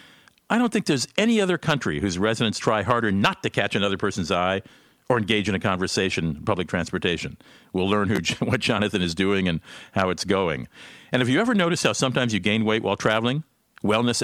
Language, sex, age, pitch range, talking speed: English, male, 50-69, 100-135 Hz, 200 wpm